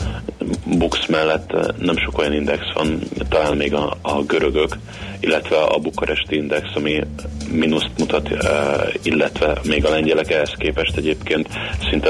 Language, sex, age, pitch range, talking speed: Hungarian, male, 30-49, 75-80 Hz, 135 wpm